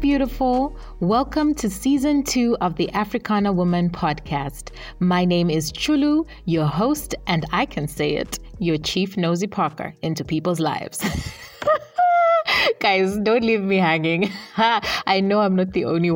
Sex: female